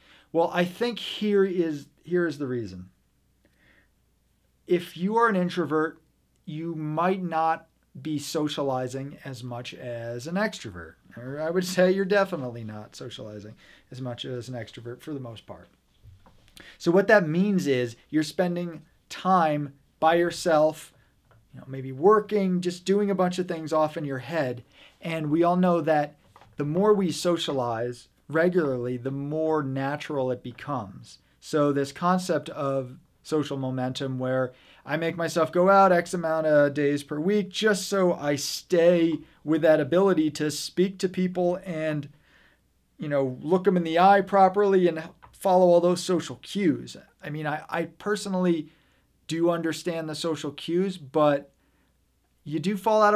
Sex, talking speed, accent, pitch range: male, 155 wpm, American, 135-180 Hz